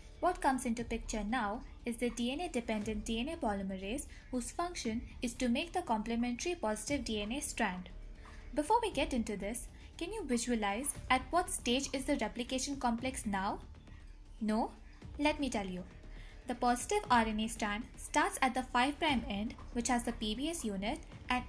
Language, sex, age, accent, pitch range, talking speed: English, female, 20-39, Indian, 225-280 Hz, 160 wpm